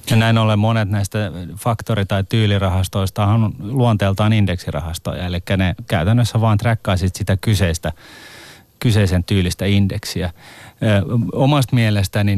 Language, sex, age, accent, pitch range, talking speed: Finnish, male, 30-49, native, 90-110 Hz, 110 wpm